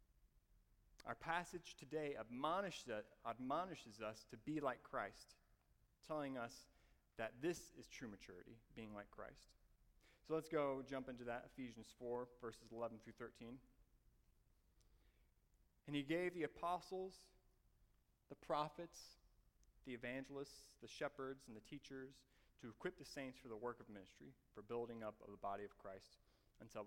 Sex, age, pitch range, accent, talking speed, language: male, 30-49, 110-130 Hz, American, 145 wpm, English